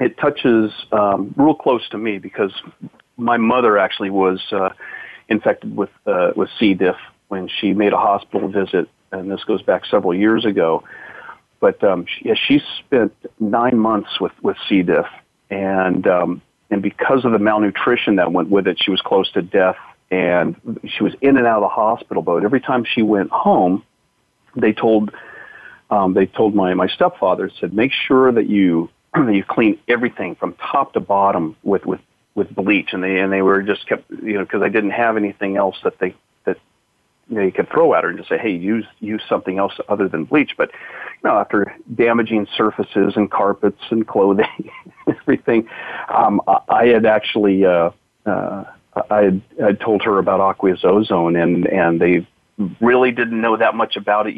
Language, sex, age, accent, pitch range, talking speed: English, male, 40-59, American, 95-115 Hz, 190 wpm